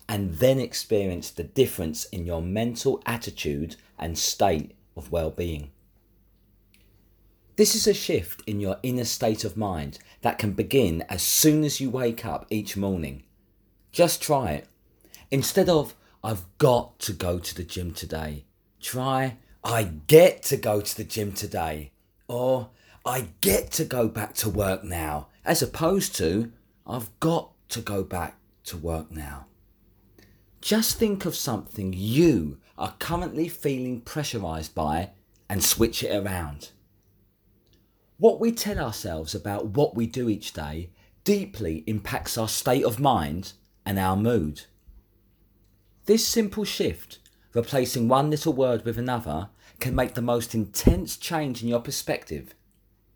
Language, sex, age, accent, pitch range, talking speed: English, male, 40-59, British, 95-125 Hz, 145 wpm